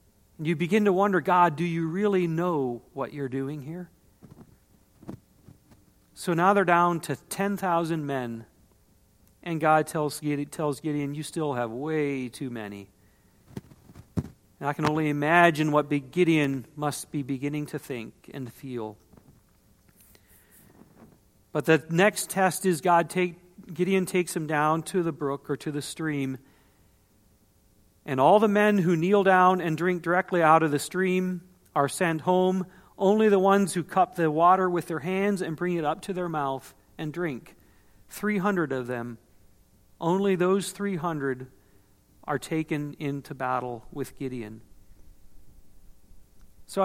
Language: English